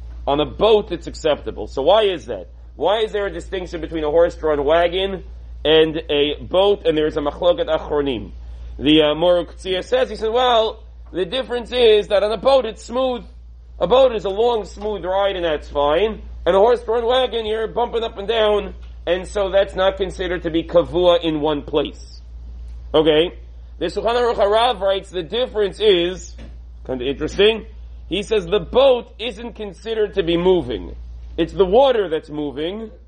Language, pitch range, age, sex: English, 140-210 Hz, 40-59, male